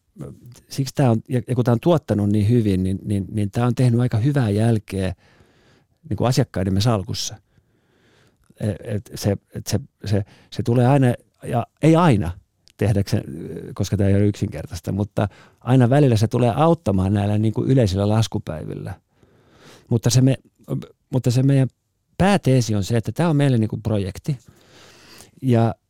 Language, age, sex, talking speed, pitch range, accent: Finnish, 50-69, male, 160 wpm, 105-125 Hz, native